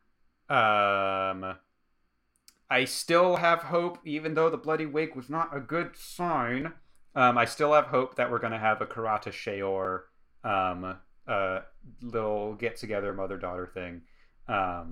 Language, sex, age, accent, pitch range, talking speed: English, male, 30-49, American, 100-145 Hz, 140 wpm